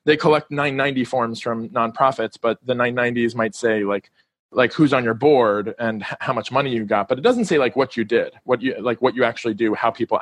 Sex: male